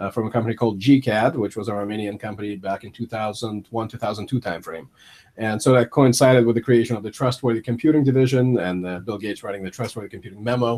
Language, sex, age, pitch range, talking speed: English, male, 40-59, 115-140 Hz, 200 wpm